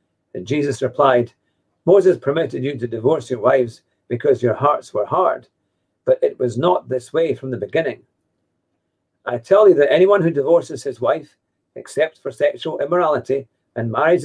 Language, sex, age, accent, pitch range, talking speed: English, male, 50-69, British, 130-175 Hz, 165 wpm